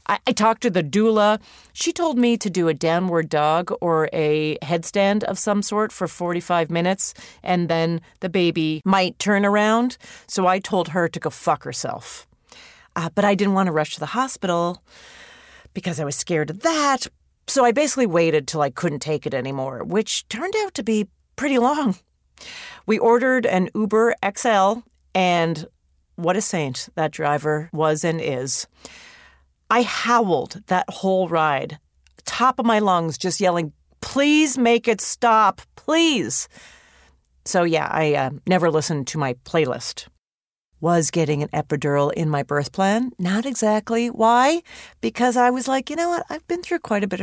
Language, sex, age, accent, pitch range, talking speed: English, female, 40-59, American, 155-220 Hz, 170 wpm